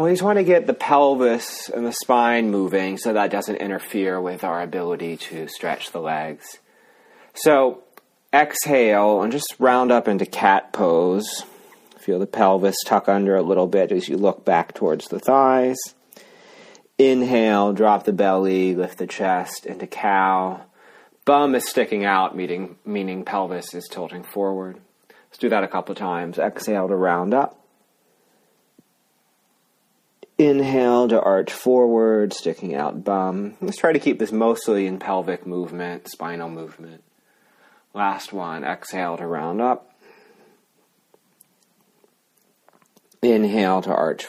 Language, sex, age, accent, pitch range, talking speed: English, male, 30-49, American, 95-135 Hz, 140 wpm